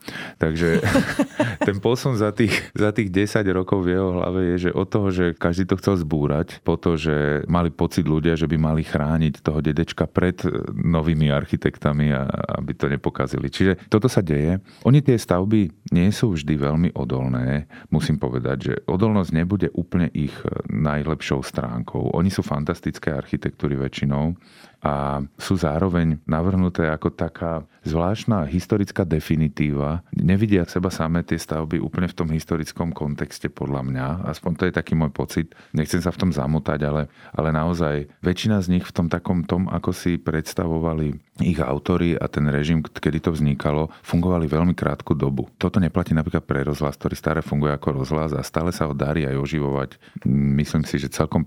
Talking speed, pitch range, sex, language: 170 wpm, 75-90 Hz, male, Slovak